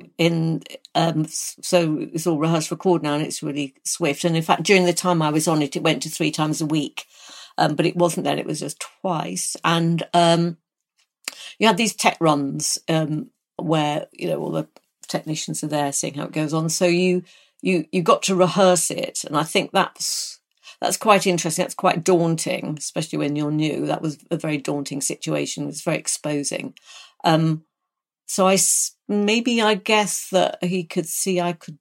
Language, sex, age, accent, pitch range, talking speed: English, female, 50-69, British, 155-190 Hz, 190 wpm